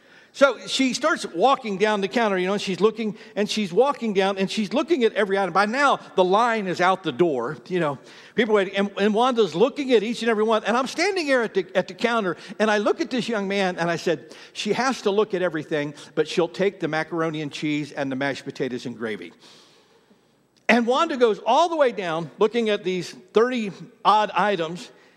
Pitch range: 165-230 Hz